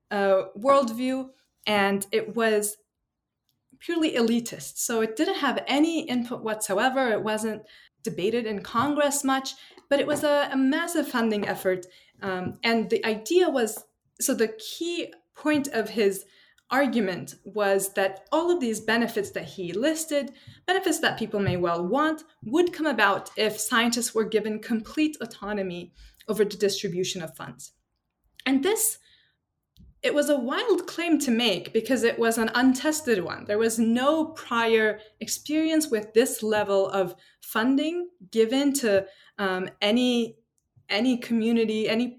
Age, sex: 20-39, female